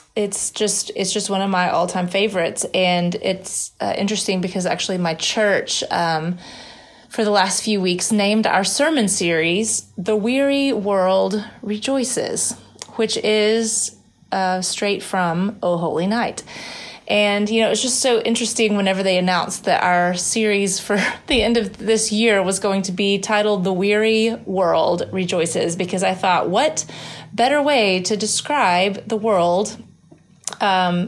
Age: 30-49